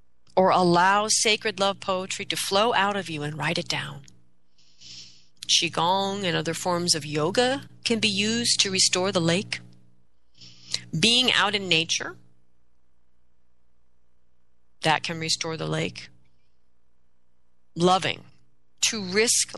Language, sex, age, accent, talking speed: English, female, 40-59, American, 120 wpm